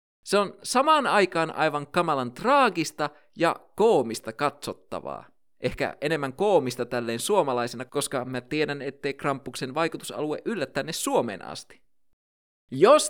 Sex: male